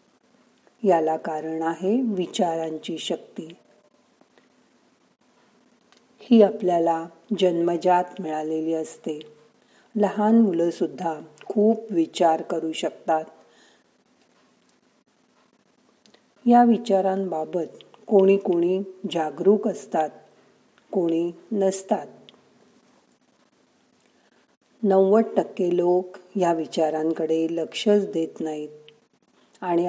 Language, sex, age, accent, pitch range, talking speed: Marathi, female, 50-69, native, 160-210 Hz, 35 wpm